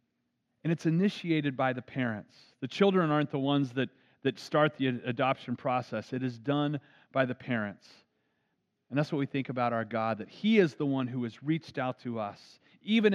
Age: 40-59